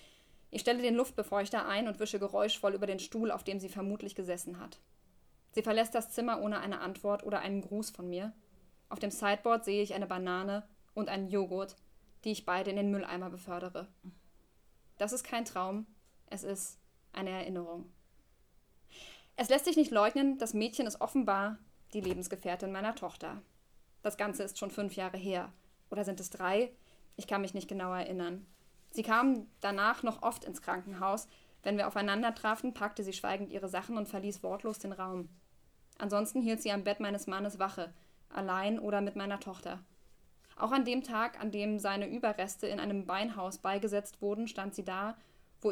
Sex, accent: female, German